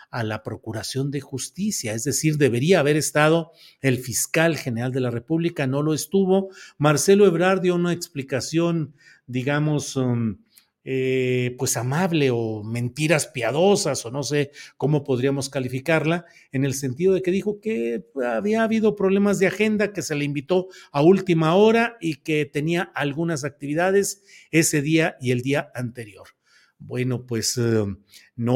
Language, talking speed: Spanish, 145 wpm